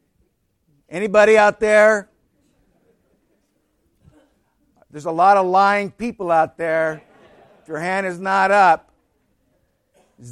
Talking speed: 105 wpm